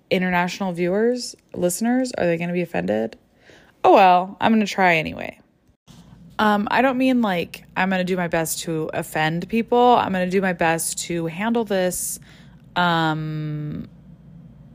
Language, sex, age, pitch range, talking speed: English, female, 20-39, 165-195 Hz, 165 wpm